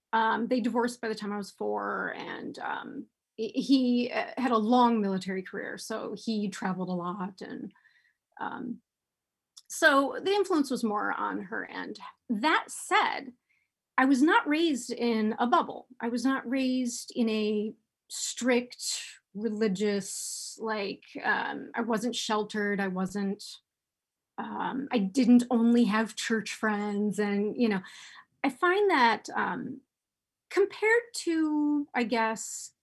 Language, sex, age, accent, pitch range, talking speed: English, female, 30-49, American, 210-260 Hz, 135 wpm